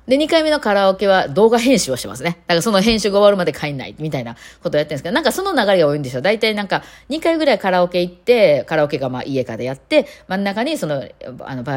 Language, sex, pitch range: Japanese, female, 135-195 Hz